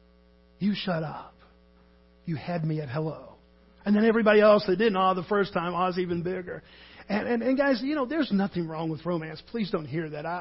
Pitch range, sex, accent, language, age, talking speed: 140-210 Hz, male, American, English, 50-69, 225 wpm